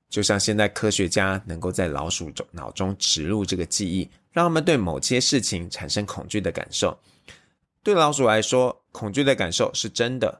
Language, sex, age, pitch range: Chinese, male, 20-39, 90-115 Hz